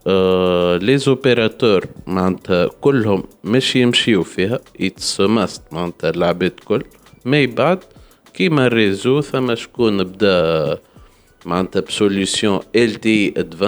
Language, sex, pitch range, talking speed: Arabic, male, 95-120 Hz, 80 wpm